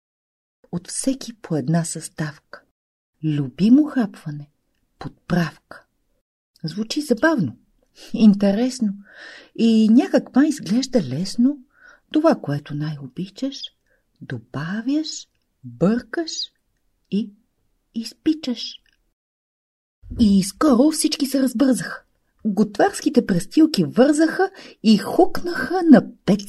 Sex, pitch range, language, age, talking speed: female, 175-265 Hz, Bulgarian, 50-69, 80 wpm